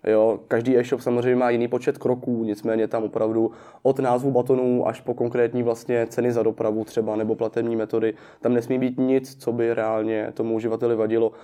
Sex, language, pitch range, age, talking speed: male, Czech, 115-130 Hz, 20-39, 185 wpm